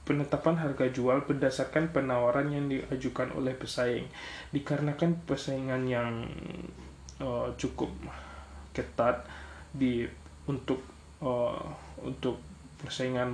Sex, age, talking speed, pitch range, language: male, 20-39, 90 wpm, 120-140 Hz, Indonesian